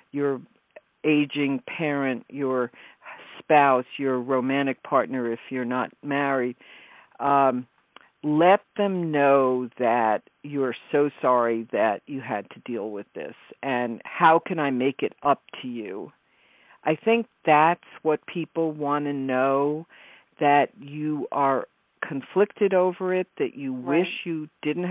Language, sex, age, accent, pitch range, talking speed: English, female, 50-69, American, 130-160 Hz, 130 wpm